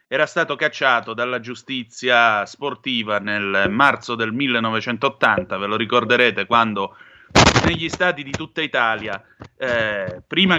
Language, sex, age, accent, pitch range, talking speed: Italian, male, 30-49, native, 115-155 Hz, 120 wpm